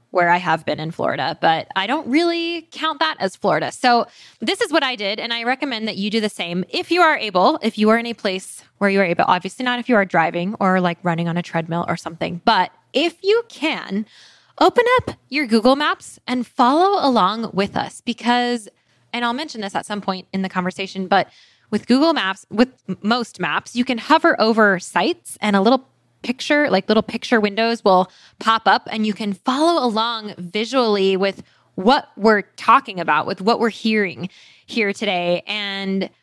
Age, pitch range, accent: 10-29, 195-255 Hz, American